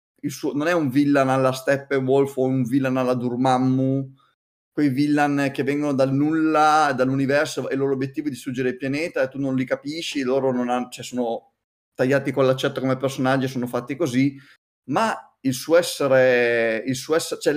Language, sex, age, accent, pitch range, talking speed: Italian, male, 20-39, native, 130-150 Hz, 185 wpm